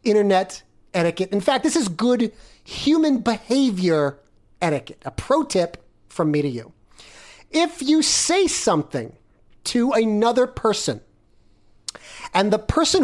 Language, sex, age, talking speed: English, male, 40-59, 125 wpm